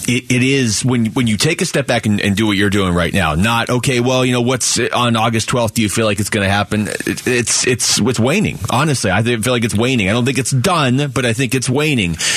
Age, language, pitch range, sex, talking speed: 30-49, English, 105-130 Hz, male, 270 wpm